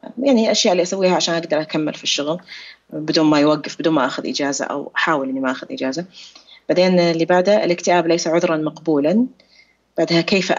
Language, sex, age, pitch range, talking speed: Arabic, female, 30-49, 160-185 Hz, 175 wpm